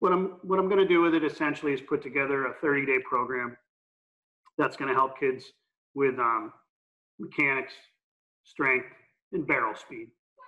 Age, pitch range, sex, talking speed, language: 40-59, 125-160 Hz, male, 155 wpm, English